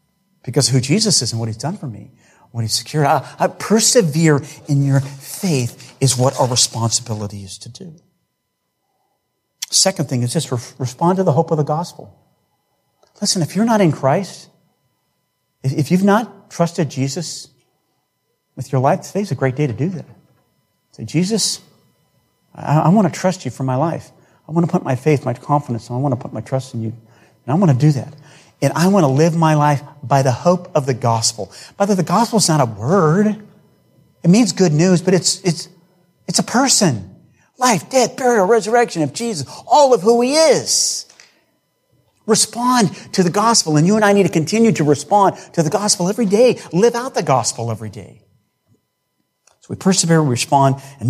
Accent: American